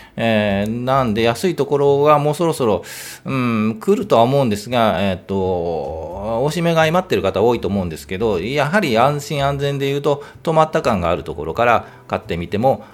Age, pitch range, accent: 40-59, 95-155 Hz, native